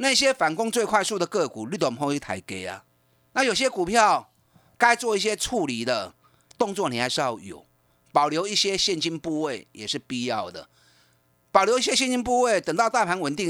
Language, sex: Chinese, male